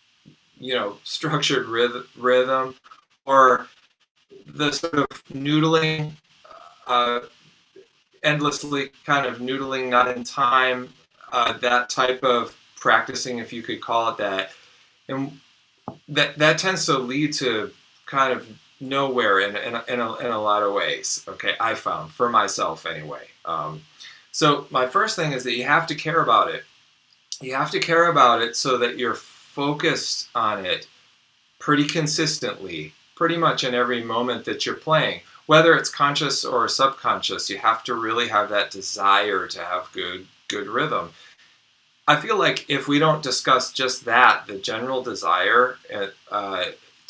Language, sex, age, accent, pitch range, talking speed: English, male, 30-49, American, 120-145 Hz, 150 wpm